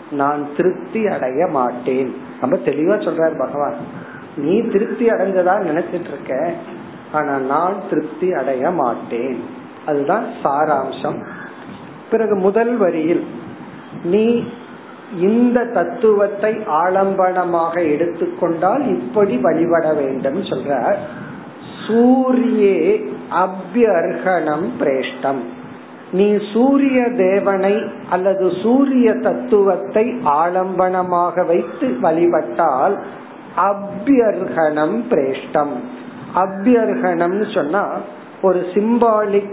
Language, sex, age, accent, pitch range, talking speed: Tamil, male, 40-59, native, 180-230 Hz, 60 wpm